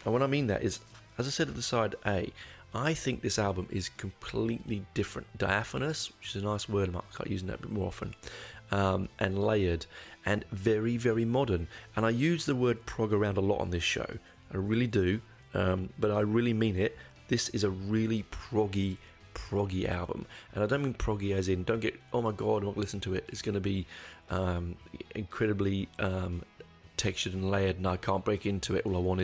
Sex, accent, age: male, British, 30-49